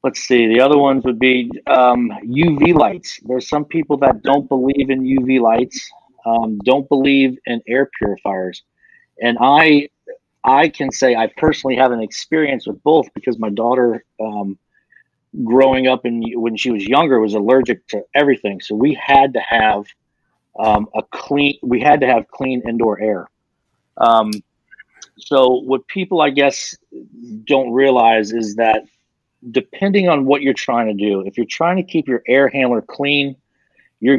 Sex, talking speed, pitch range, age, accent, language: male, 165 wpm, 115-140 Hz, 40-59, American, English